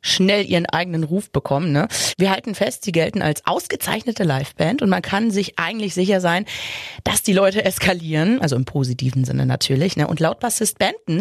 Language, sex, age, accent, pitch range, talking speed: German, female, 30-49, German, 160-210 Hz, 180 wpm